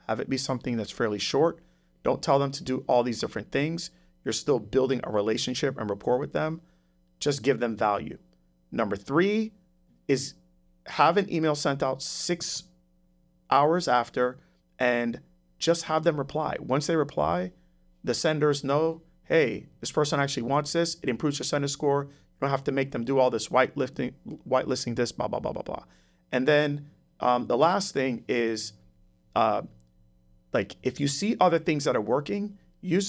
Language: English